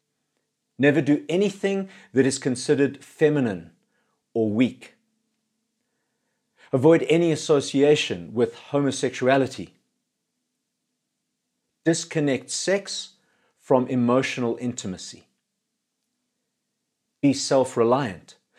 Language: English